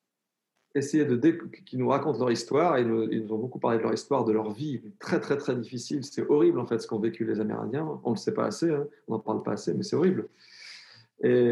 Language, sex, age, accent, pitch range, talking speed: French, male, 40-59, French, 125-180 Hz, 245 wpm